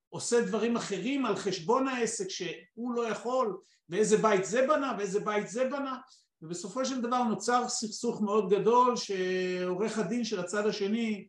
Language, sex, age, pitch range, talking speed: Hebrew, male, 50-69, 195-245 Hz, 155 wpm